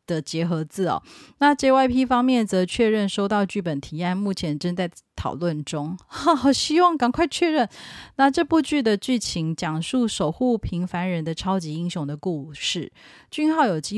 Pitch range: 165-215 Hz